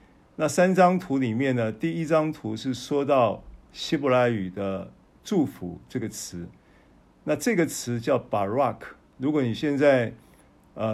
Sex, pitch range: male, 100-140 Hz